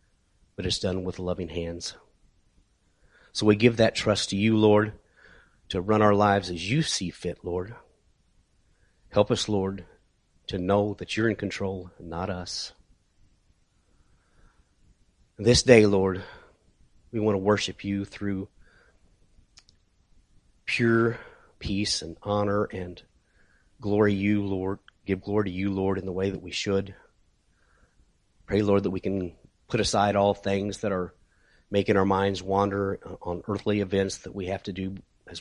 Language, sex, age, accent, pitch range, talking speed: English, male, 30-49, American, 90-105 Hz, 150 wpm